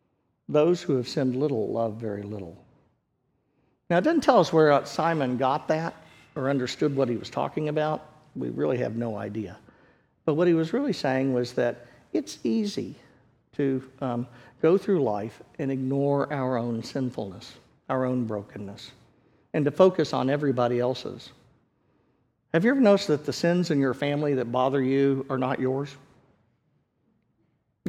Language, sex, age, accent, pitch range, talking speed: English, male, 50-69, American, 120-155 Hz, 160 wpm